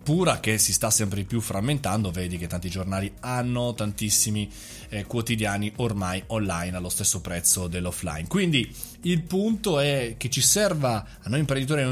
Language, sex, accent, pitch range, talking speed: Italian, male, native, 105-145 Hz, 165 wpm